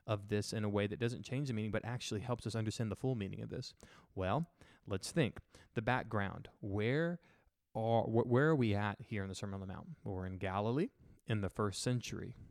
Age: 20-39